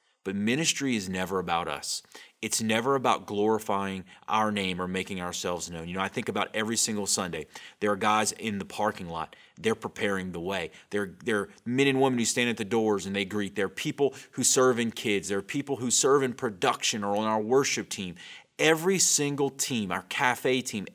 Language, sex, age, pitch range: English, male, 30-49, 95-130 Hz